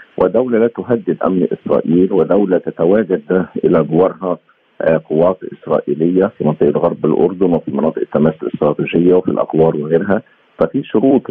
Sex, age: male, 50-69